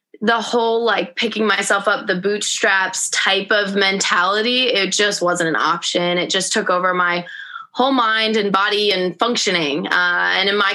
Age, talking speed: 20-39, 175 wpm